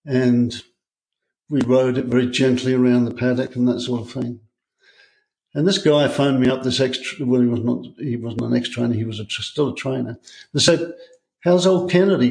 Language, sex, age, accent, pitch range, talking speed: English, male, 60-79, British, 120-140 Hz, 205 wpm